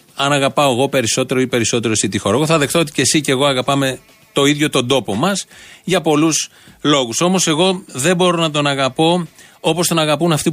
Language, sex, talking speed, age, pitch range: Greek, male, 200 wpm, 30-49, 130-165 Hz